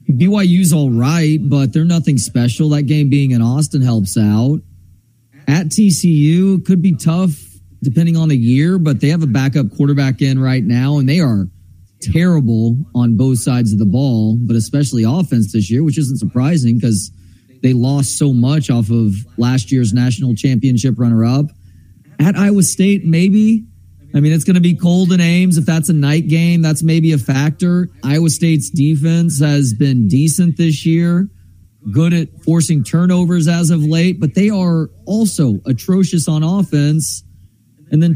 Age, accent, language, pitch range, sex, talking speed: 30-49, American, English, 120-170 Hz, male, 170 wpm